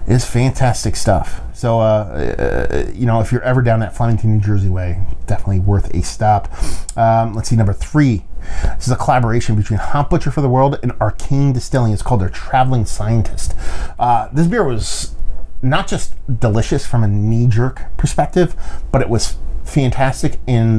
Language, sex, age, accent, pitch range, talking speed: English, male, 30-49, American, 85-130 Hz, 175 wpm